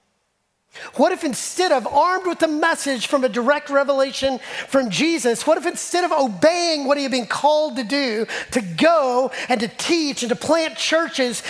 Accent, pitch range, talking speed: American, 195-290 Hz, 185 wpm